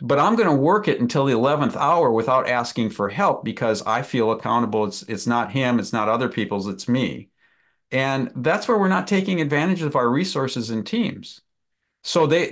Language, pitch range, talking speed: English, 115-150 Hz, 200 wpm